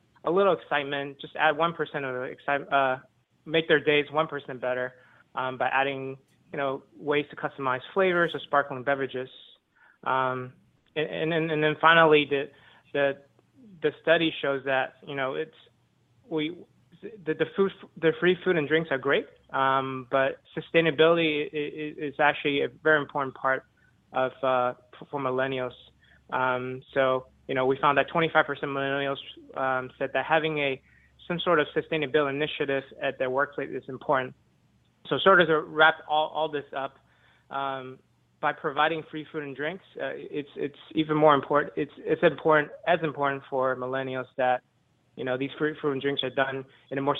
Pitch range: 130-155 Hz